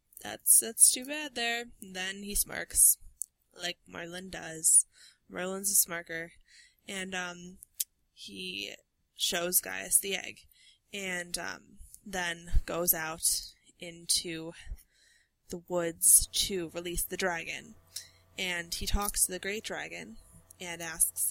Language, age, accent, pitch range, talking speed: English, 20-39, American, 170-195 Hz, 120 wpm